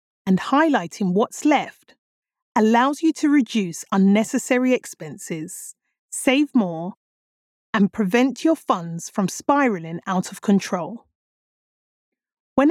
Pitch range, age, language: 200-265 Hz, 30-49, English